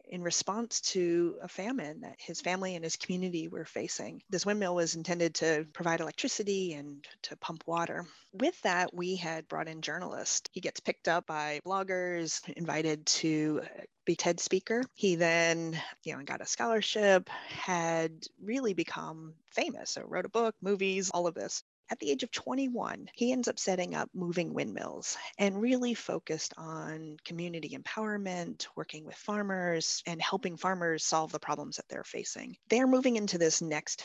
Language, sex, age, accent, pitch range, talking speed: English, female, 30-49, American, 165-205 Hz, 170 wpm